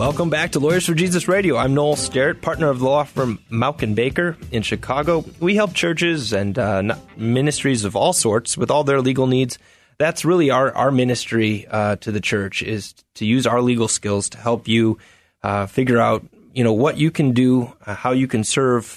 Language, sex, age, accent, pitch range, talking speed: English, male, 30-49, American, 105-135 Hz, 205 wpm